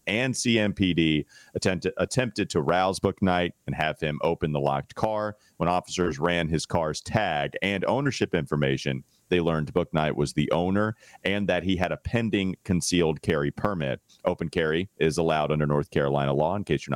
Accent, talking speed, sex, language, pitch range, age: American, 170 wpm, male, English, 75-100 Hz, 40-59